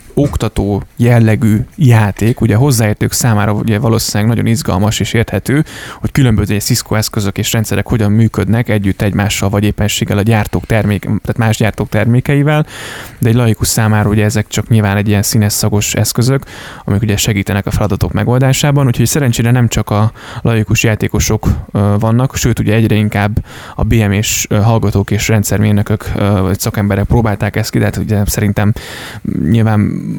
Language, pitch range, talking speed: Hungarian, 105-115 Hz, 145 wpm